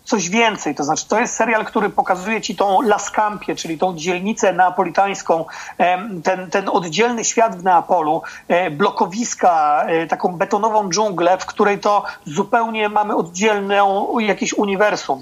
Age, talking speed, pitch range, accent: 40-59, 140 wpm, 190-230 Hz, native